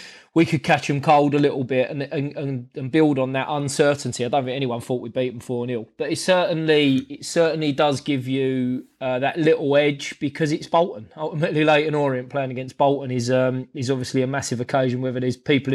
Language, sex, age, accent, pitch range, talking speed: English, male, 20-39, British, 130-145 Hz, 215 wpm